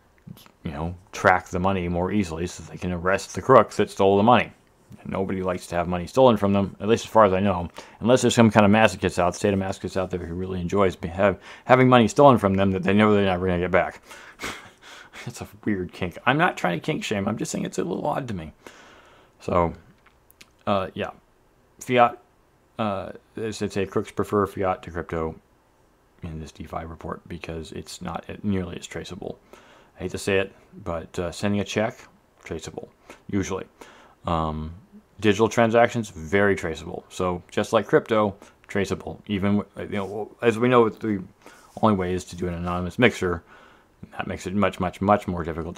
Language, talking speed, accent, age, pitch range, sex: English, 195 wpm, American, 30-49, 85-105 Hz, male